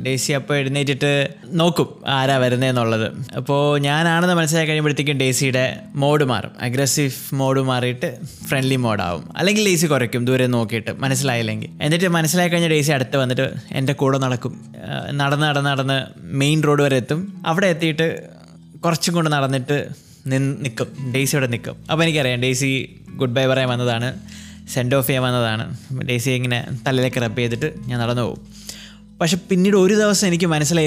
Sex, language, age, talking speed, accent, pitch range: male, Malayalam, 20-39, 140 wpm, native, 130-165 Hz